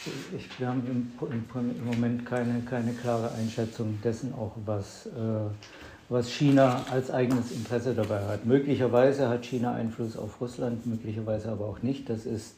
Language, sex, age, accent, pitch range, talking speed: German, male, 60-79, German, 110-125 Hz, 160 wpm